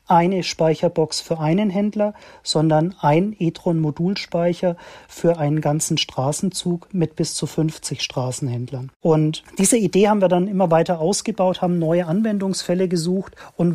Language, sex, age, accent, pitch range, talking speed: German, male, 40-59, German, 155-190 Hz, 140 wpm